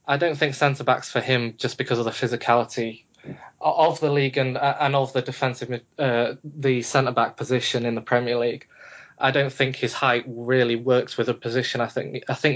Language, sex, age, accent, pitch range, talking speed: English, male, 20-39, British, 120-135 Hz, 205 wpm